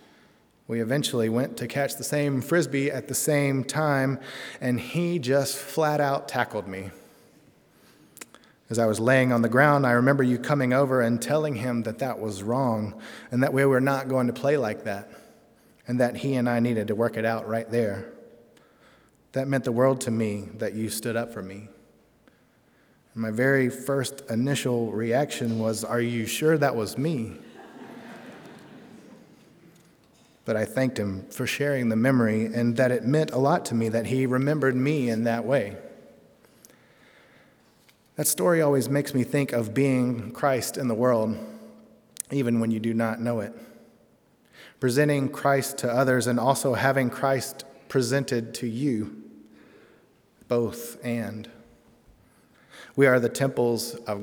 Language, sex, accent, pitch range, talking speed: English, male, American, 115-140 Hz, 160 wpm